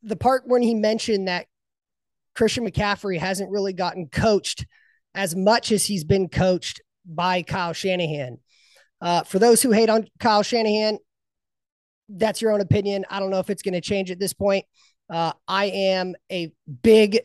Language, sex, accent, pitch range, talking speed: English, male, American, 175-210 Hz, 170 wpm